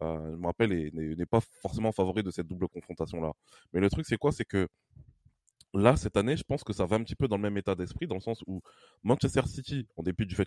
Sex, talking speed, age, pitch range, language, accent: male, 265 wpm, 20-39, 90-115 Hz, French, French